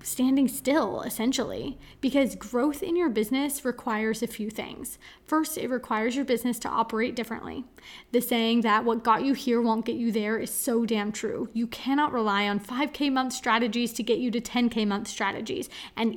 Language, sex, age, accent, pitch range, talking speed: English, female, 20-39, American, 225-270 Hz, 185 wpm